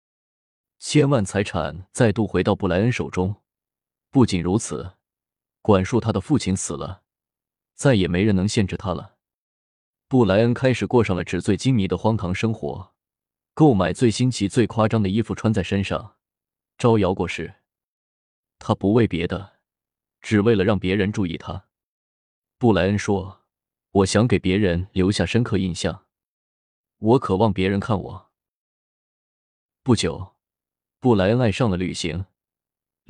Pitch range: 90-110 Hz